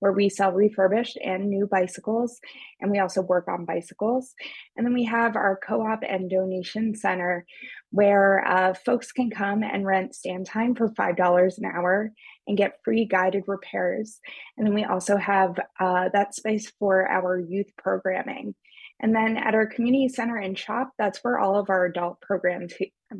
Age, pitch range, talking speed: 20-39, 190-220 Hz, 175 wpm